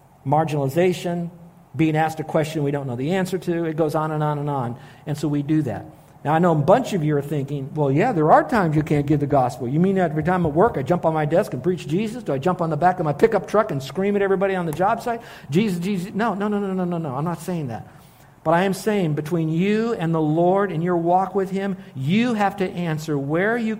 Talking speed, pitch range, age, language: 270 wpm, 145-190 Hz, 60-79, English